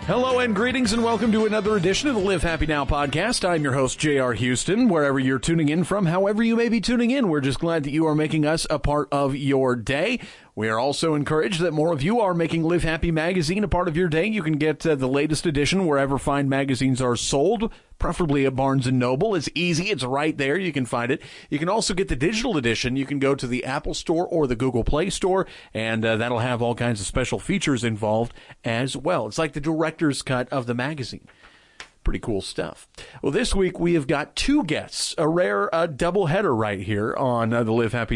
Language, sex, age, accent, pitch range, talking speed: English, male, 30-49, American, 130-170 Hz, 230 wpm